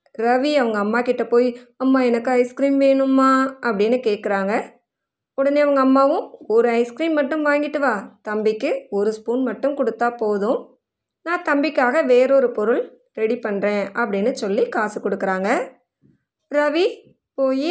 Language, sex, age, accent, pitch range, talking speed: Tamil, female, 20-39, native, 220-295 Hz, 120 wpm